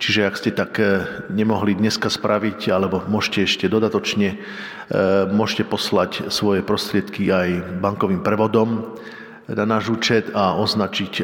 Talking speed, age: 125 wpm, 50-69